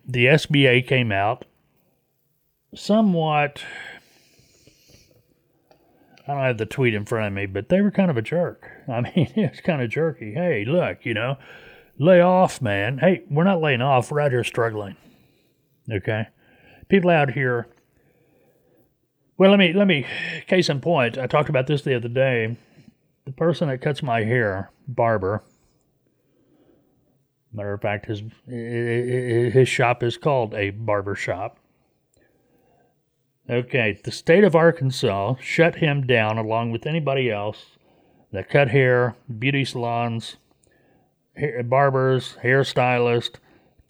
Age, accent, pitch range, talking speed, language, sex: 40-59, American, 120-155 Hz, 140 wpm, English, male